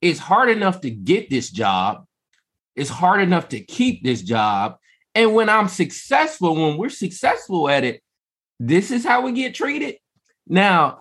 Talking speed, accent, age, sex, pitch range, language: 165 wpm, American, 20-39, male, 130-185 Hz, English